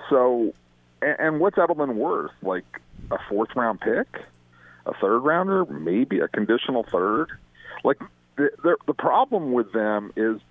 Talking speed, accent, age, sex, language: 135 wpm, American, 50-69, male, English